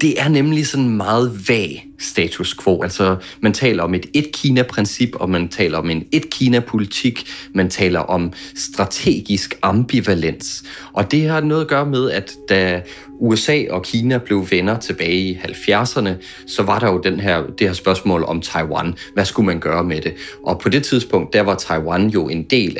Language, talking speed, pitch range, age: Danish, 180 wpm, 90-120 Hz, 30-49